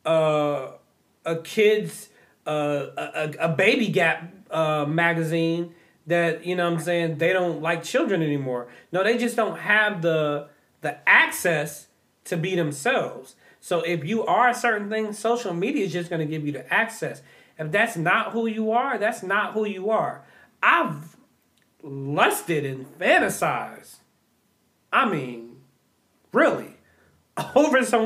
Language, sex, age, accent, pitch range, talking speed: English, male, 30-49, American, 150-220 Hz, 150 wpm